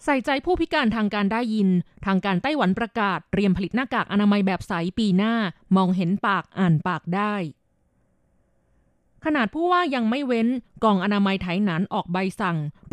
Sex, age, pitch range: female, 20-39, 180-230 Hz